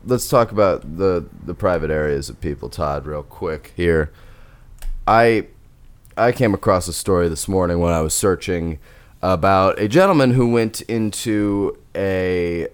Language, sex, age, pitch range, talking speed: English, male, 20-39, 85-115 Hz, 150 wpm